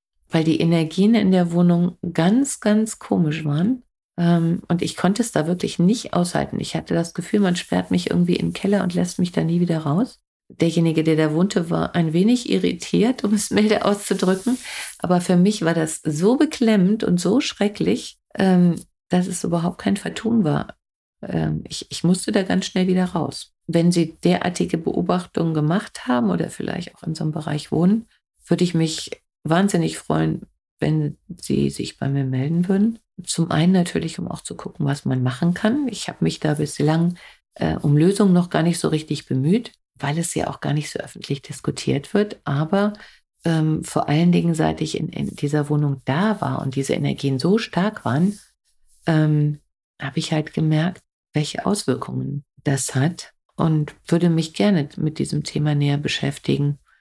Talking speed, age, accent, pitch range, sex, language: 180 wpm, 50-69, German, 150-195 Hz, female, German